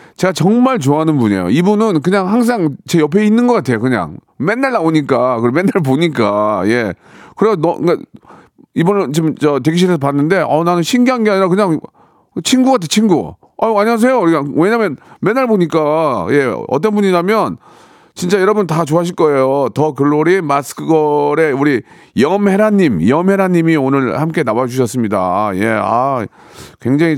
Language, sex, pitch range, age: Korean, male, 130-185 Hz, 40-59